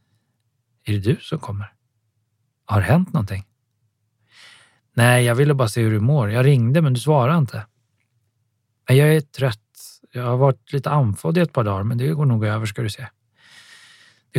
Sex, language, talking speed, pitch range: male, Swedish, 180 wpm, 110-130 Hz